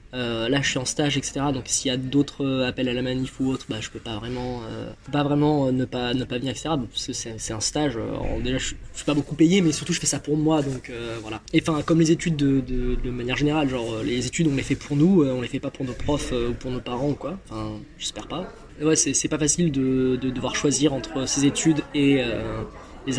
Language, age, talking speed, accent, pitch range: French, 20-39, 270 wpm, French, 125-145 Hz